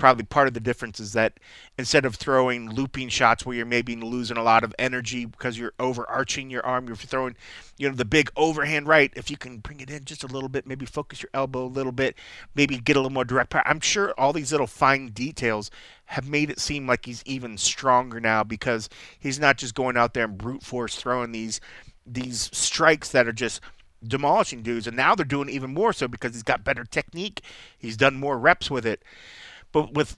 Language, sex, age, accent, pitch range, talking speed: English, male, 30-49, American, 115-140 Hz, 225 wpm